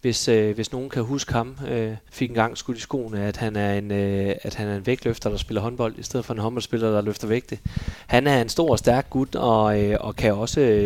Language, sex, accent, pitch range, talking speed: Danish, male, native, 110-125 Hz, 240 wpm